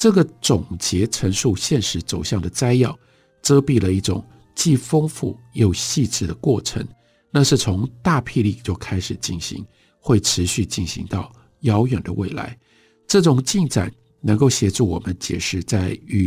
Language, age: Chinese, 60-79